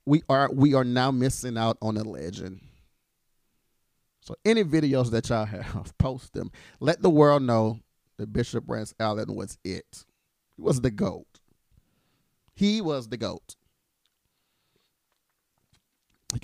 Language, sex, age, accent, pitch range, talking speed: English, male, 40-59, American, 110-140 Hz, 140 wpm